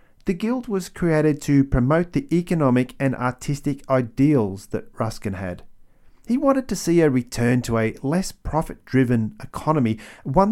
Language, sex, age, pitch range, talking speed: English, male, 40-59, 110-155 Hz, 150 wpm